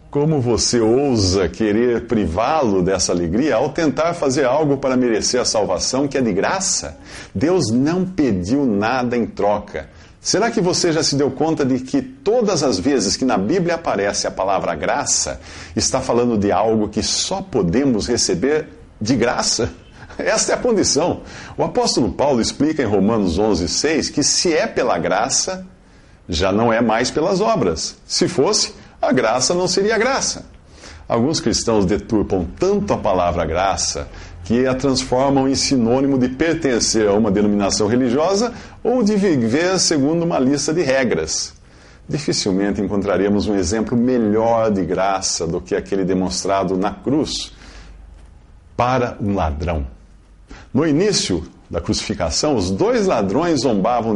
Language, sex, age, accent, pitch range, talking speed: English, male, 50-69, Brazilian, 95-155 Hz, 150 wpm